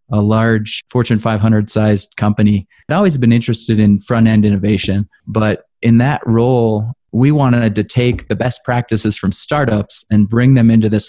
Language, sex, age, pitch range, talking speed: English, male, 20-39, 105-120 Hz, 160 wpm